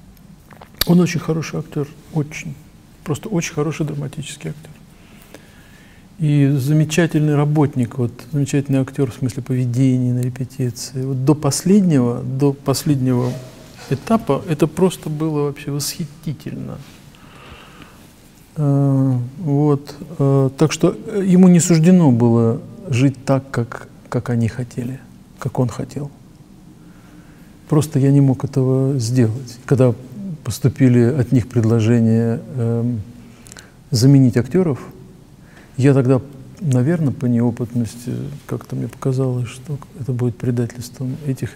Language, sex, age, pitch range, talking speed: Russian, male, 50-69, 120-145 Hz, 115 wpm